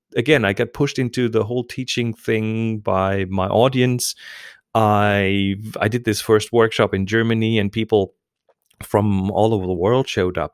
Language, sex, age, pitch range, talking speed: English, male, 30-49, 100-125 Hz, 165 wpm